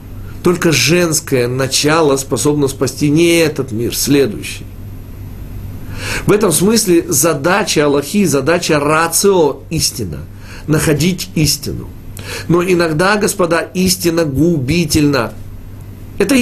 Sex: male